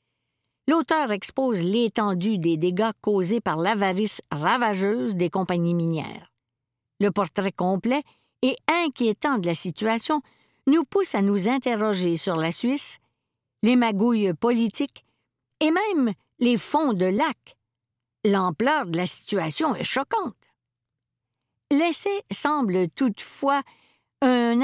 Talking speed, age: 115 wpm, 60-79